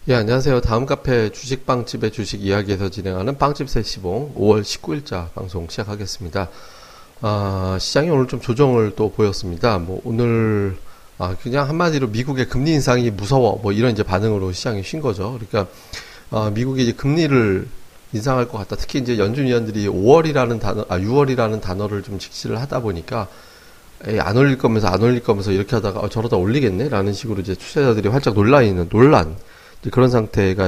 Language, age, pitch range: Korean, 30-49, 100-130 Hz